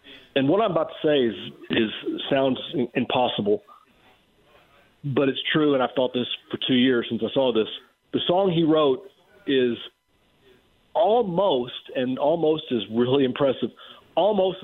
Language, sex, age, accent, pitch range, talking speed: English, male, 40-59, American, 130-180 Hz, 150 wpm